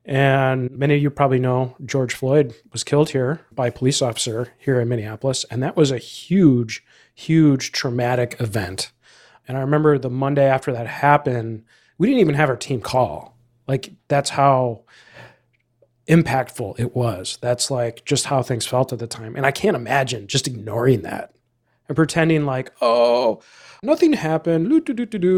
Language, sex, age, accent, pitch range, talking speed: English, male, 30-49, American, 125-155 Hz, 165 wpm